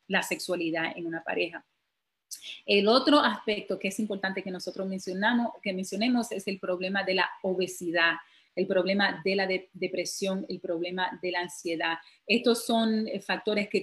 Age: 40-59